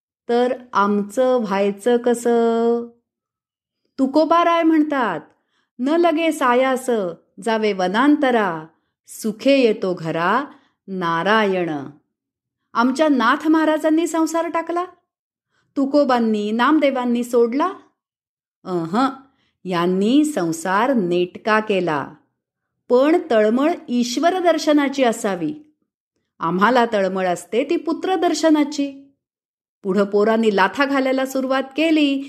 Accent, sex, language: native, female, Marathi